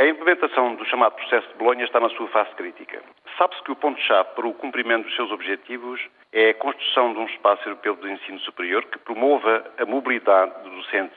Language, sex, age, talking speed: Portuguese, male, 50-69, 205 wpm